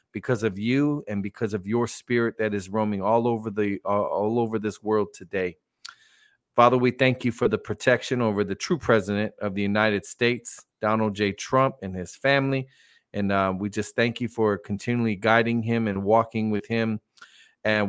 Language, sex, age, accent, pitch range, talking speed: English, male, 40-59, American, 105-125 Hz, 190 wpm